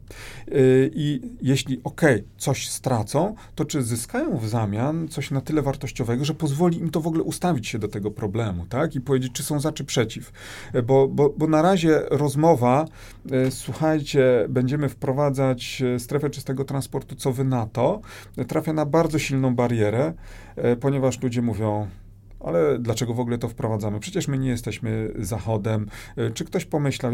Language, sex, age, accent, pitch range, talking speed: Polish, male, 40-59, native, 105-135 Hz, 160 wpm